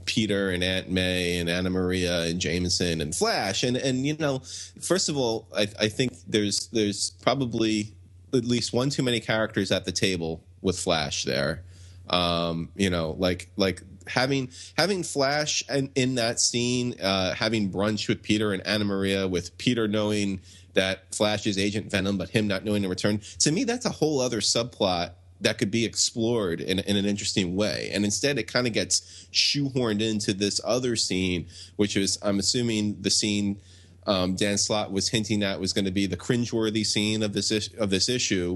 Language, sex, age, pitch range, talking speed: English, male, 30-49, 95-110 Hz, 190 wpm